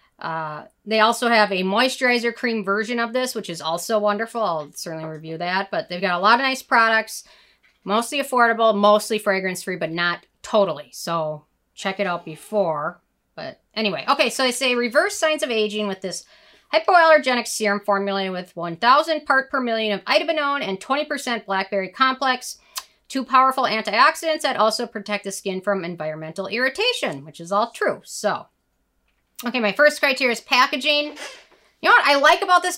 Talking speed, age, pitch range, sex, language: 170 wpm, 40-59, 190-255 Hz, female, English